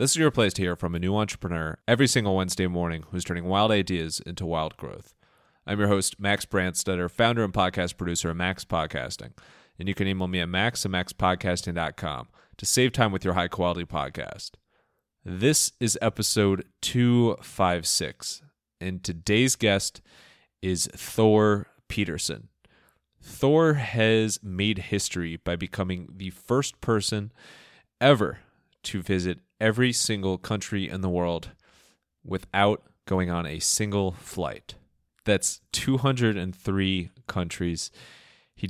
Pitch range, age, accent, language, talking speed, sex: 90-110 Hz, 30-49, American, English, 135 wpm, male